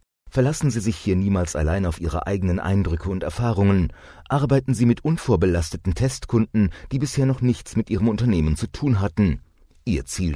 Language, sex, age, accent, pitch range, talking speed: German, male, 30-49, German, 85-120 Hz, 170 wpm